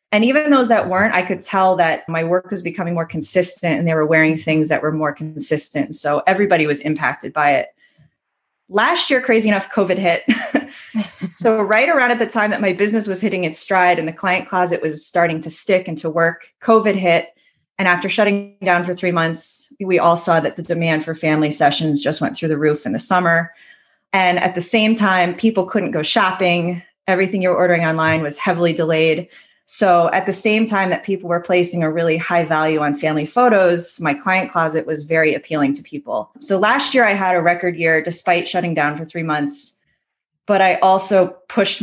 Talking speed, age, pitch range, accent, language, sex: 205 wpm, 30-49, 160-195 Hz, American, English, female